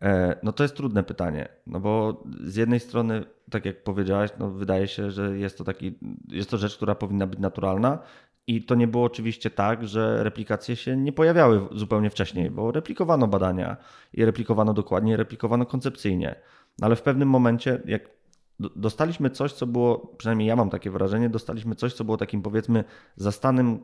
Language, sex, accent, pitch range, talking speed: Polish, male, native, 100-120 Hz, 175 wpm